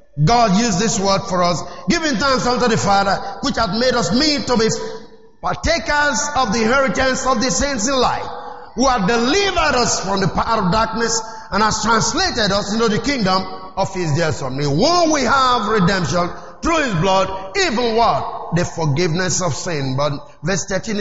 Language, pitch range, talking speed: English, 190-270 Hz, 185 wpm